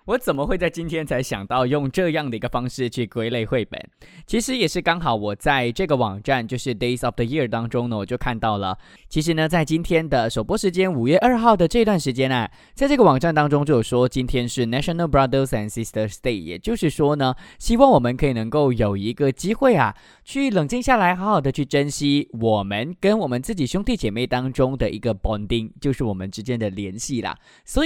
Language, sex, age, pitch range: English, male, 20-39, 120-195 Hz